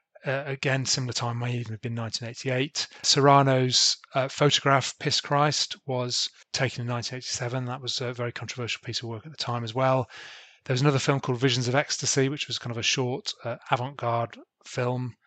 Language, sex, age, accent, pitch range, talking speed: English, male, 30-49, British, 120-135 Hz, 190 wpm